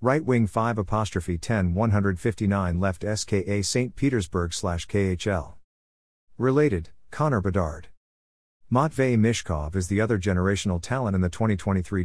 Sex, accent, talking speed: male, American, 145 wpm